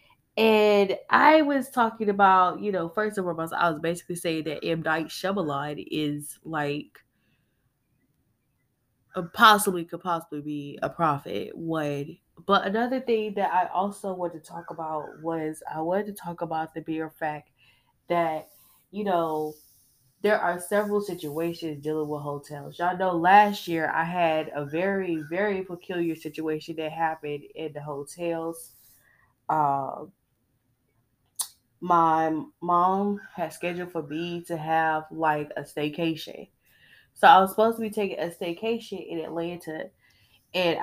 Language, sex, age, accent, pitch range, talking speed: English, female, 20-39, American, 150-185 Hz, 145 wpm